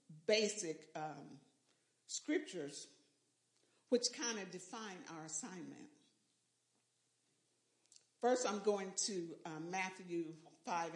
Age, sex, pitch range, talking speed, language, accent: 50-69, female, 190-250 Hz, 90 wpm, English, American